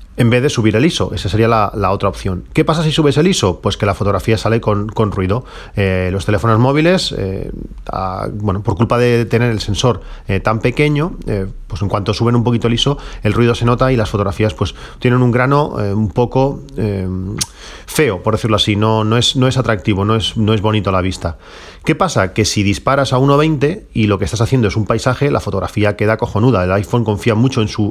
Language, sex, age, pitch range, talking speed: Spanish, male, 40-59, 105-120 Hz, 235 wpm